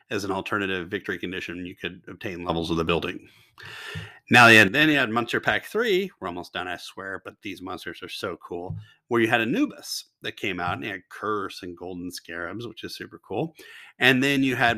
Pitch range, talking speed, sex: 95-140 Hz, 210 wpm, male